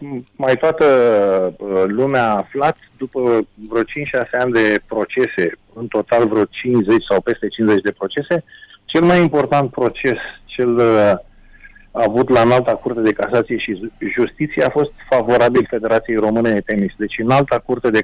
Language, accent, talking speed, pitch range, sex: Romanian, native, 145 wpm, 115-145 Hz, male